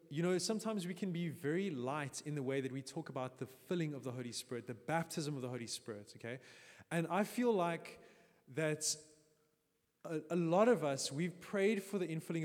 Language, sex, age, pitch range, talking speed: English, male, 20-39, 140-200 Hz, 205 wpm